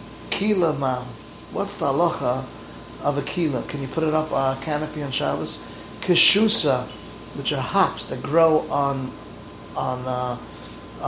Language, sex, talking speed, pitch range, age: English, male, 145 wpm, 130-155 Hz, 30-49